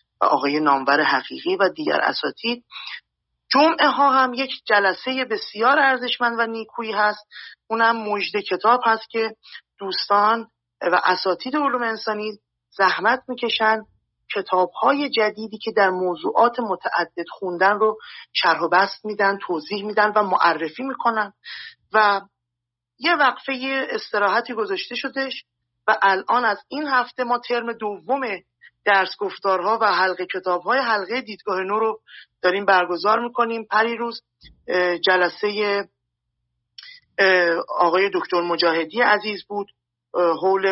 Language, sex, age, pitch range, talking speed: Persian, male, 30-49, 175-230 Hz, 120 wpm